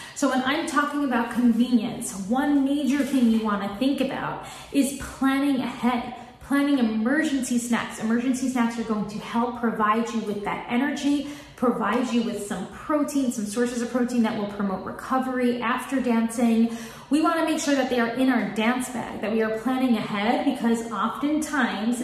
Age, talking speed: 20-39, 170 wpm